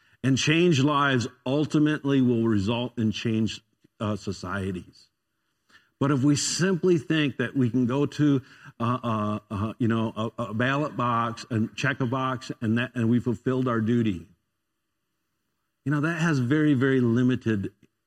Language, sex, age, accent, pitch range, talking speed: English, male, 50-69, American, 110-145 Hz, 155 wpm